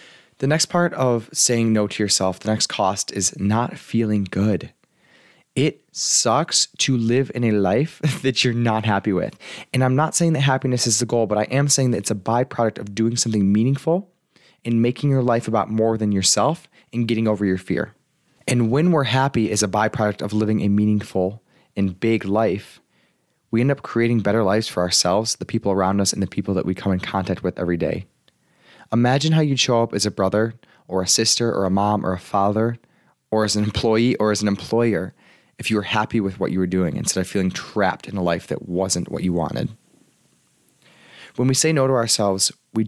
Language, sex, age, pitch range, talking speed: English, male, 20-39, 100-120 Hz, 210 wpm